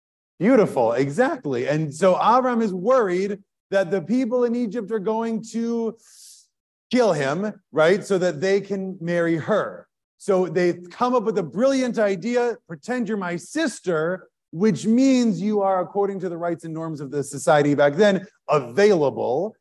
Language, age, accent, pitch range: English, 30-49, American, 160-225 Hz